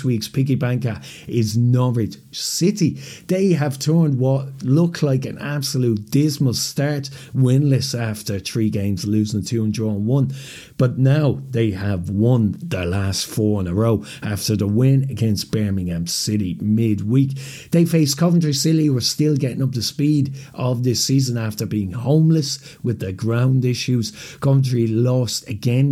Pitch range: 110-140 Hz